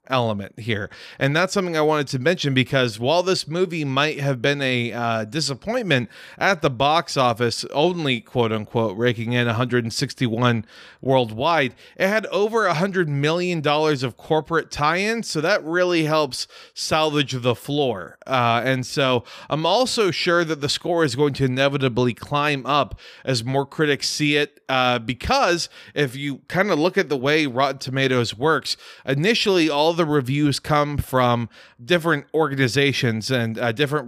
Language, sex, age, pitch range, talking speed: English, male, 30-49, 130-160 Hz, 160 wpm